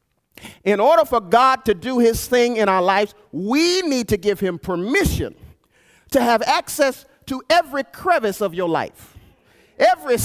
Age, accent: 40-59, American